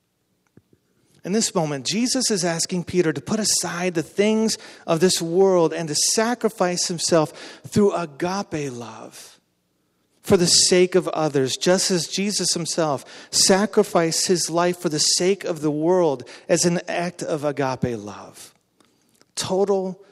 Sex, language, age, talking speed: male, English, 40-59, 140 wpm